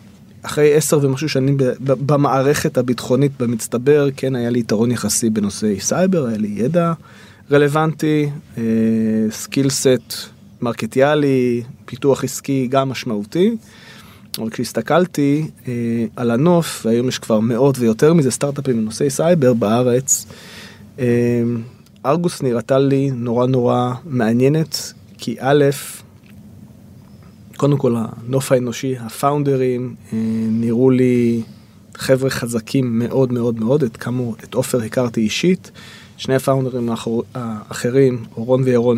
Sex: male